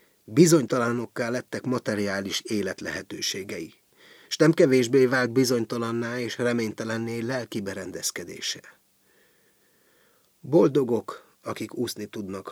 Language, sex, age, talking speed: Hungarian, male, 30-49, 80 wpm